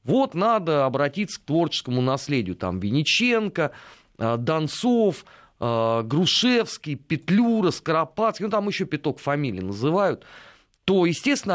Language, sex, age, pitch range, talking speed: Russian, male, 30-49, 130-190 Hz, 105 wpm